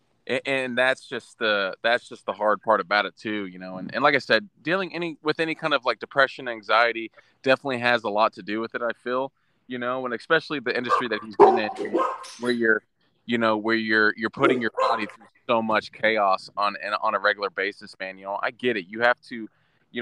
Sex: male